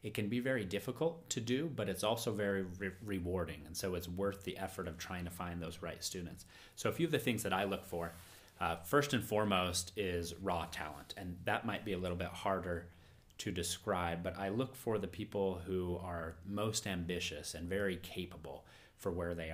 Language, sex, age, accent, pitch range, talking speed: English, male, 30-49, American, 85-105 Hz, 210 wpm